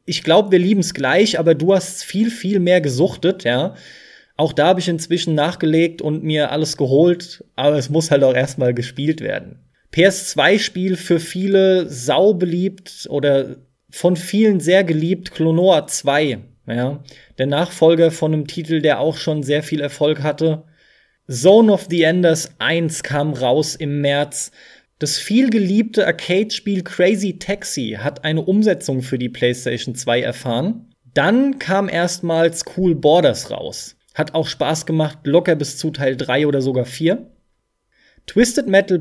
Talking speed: 150 wpm